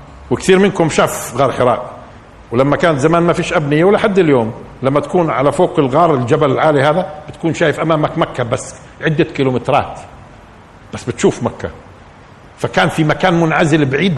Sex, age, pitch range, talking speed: male, 50-69, 120-185 Hz, 155 wpm